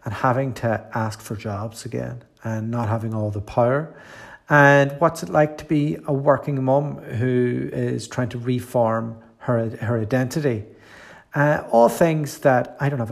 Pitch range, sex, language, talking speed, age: 115-140 Hz, male, English, 170 wpm, 40-59